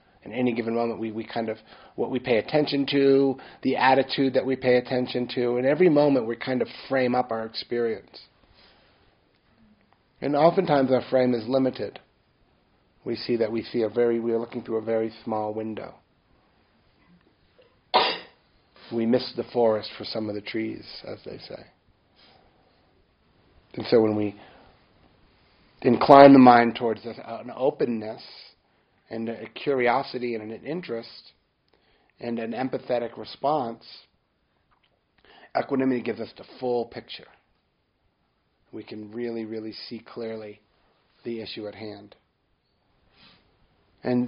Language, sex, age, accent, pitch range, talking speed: English, male, 40-59, American, 110-130 Hz, 135 wpm